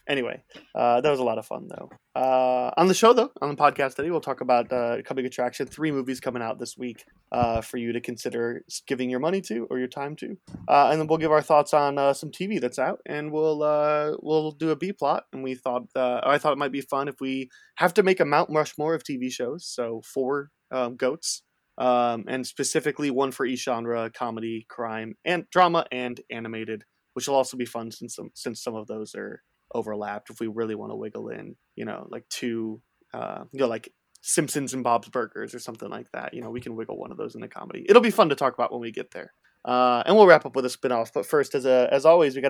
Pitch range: 120-155 Hz